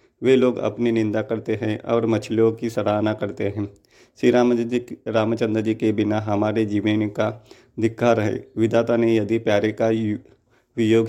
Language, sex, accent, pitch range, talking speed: Hindi, male, native, 110-115 Hz, 160 wpm